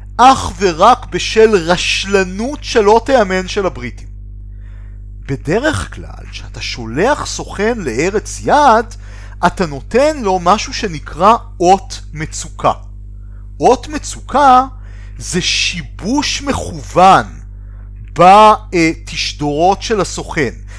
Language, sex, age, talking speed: Hebrew, male, 40-59, 85 wpm